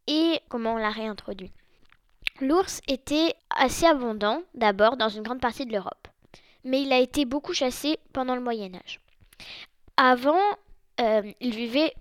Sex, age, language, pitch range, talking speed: female, 10-29, French, 225-290 Hz, 145 wpm